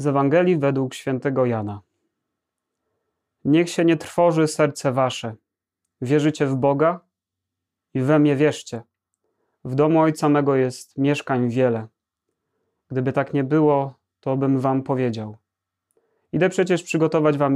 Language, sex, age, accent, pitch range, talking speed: Polish, male, 30-49, native, 115-145 Hz, 125 wpm